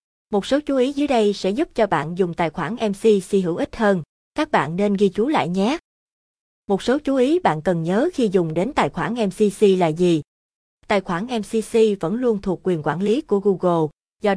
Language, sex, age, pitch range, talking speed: Vietnamese, female, 20-39, 180-230 Hz, 215 wpm